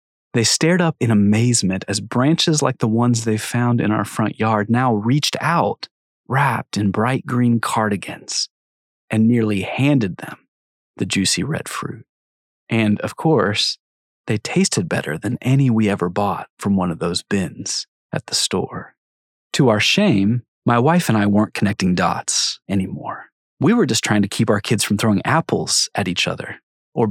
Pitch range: 100-135 Hz